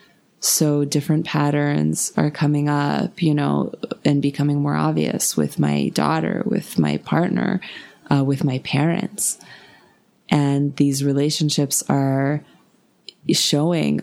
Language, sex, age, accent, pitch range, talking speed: English, female, 20-39, American, 135-155 Hz, 115 wpm